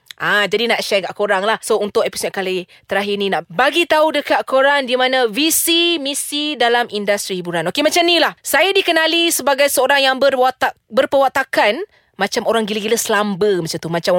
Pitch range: 200-275 Hz